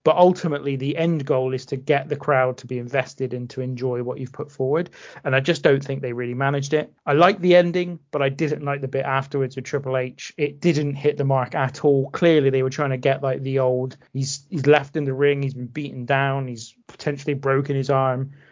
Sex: male